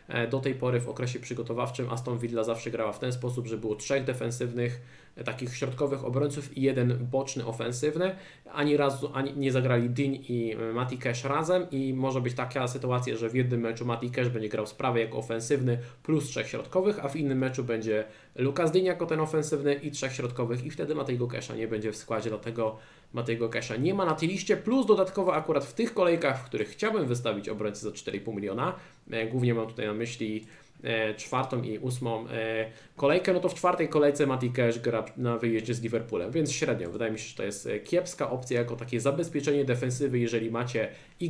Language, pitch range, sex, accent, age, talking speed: Polish, 115-145 Hz, male, native, 20-39, 190 wpm